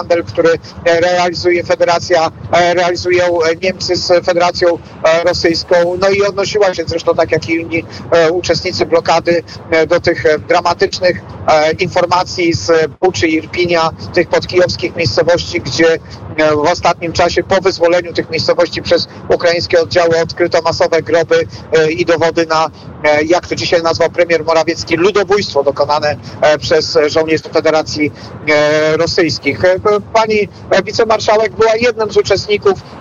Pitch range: 155-180 Hz